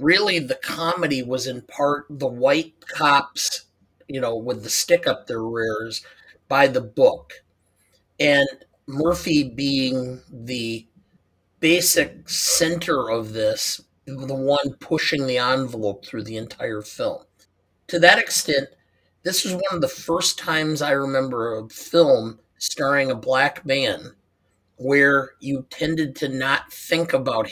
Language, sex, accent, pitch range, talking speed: English, male, American, 115-165 Hz, 135 wpm